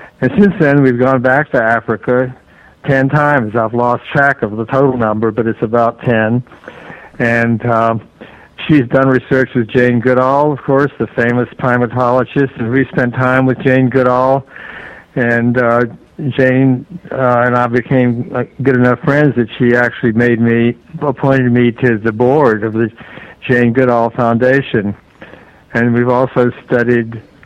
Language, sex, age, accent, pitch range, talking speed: English, male, 60-79, American, 115-135 Hz, 155 wpm